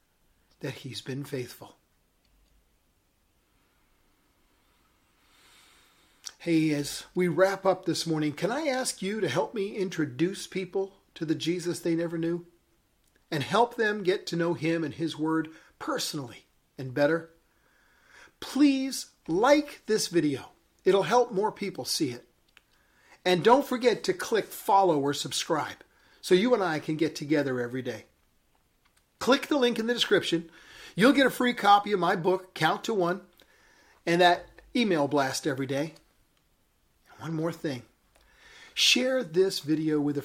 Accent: American